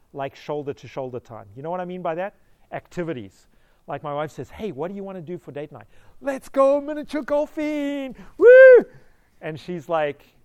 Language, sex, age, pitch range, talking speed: English, male, 40-59, 130-180 Hz, 195 wpm